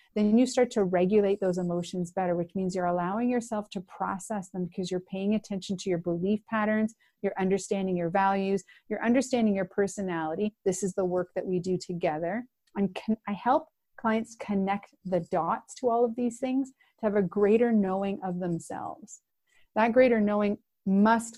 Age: 30-49